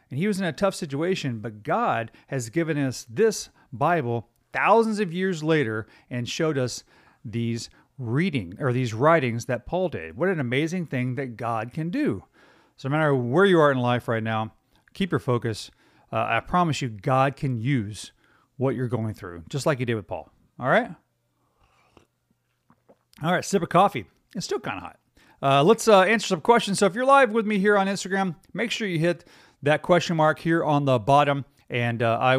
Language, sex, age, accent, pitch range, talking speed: English, male, 40-59, American, 120-165 Hz, 200 wpm